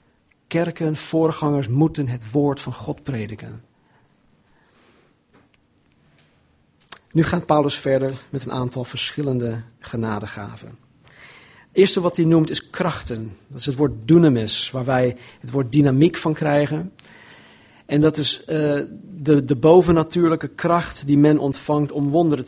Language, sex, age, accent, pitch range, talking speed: Dutch, male, 40-59, Dutch, 125-160 Hz, 125 wpm